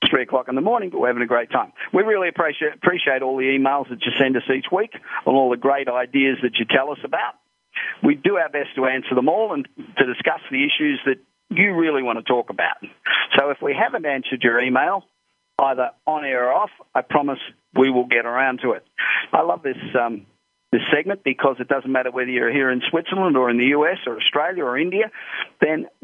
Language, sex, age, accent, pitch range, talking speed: English, male, 50-69, Australian, 125-155 Hz, 225 wpm